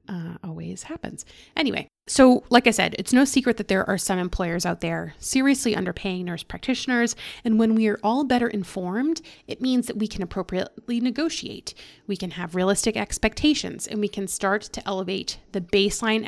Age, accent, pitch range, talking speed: 20-39, American, 185-240 Hz, 175 wpm